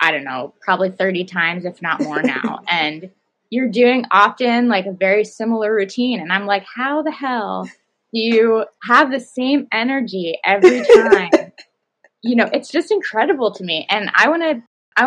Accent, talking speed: American, 175 wpm